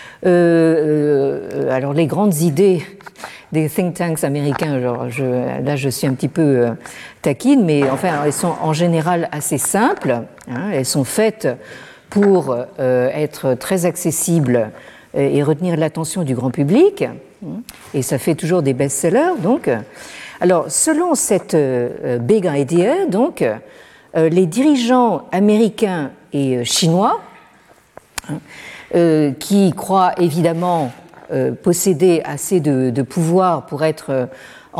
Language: French